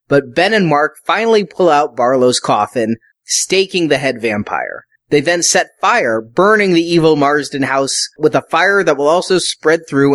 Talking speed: 175 wpm